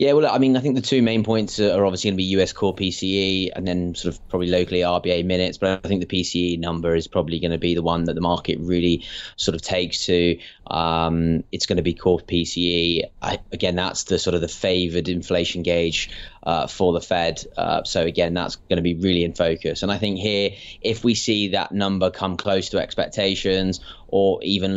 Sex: male